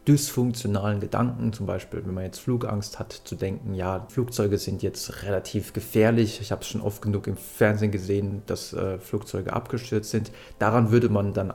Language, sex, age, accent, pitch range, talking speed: German, male, 30-49, German, 100-120 Hz, 180 wpm